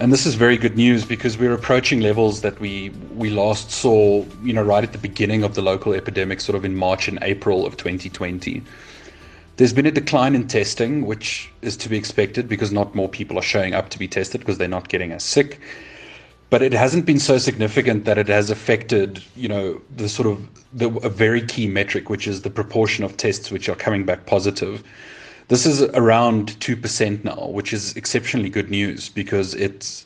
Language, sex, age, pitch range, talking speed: English, male, 30-49, 100-115 Hz, 205 wpm